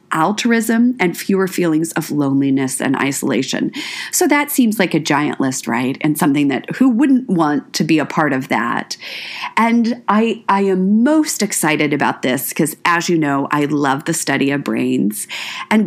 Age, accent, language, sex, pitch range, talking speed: 40-59, American, English, female, 150-215 Hz, 180 wpm